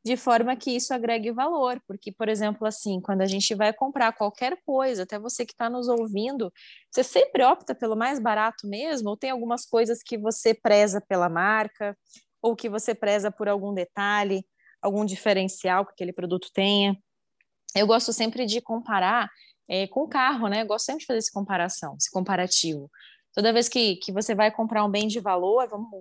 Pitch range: 200-240 Hz